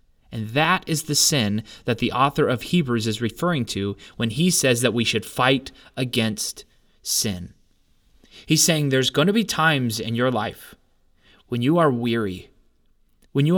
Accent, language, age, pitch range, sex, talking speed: American, English, 20-39, 105-145 Hz, male, 170 wpm